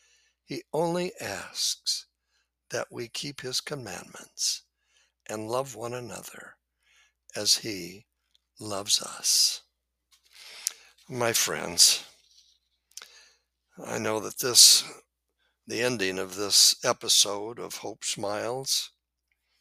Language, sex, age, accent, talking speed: English, male, 60-79, American, 90 wpm